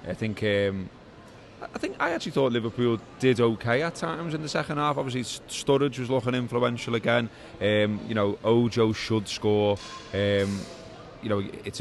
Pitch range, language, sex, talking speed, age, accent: 100-115 Hz, English, male, 170 wpm, 20-39, British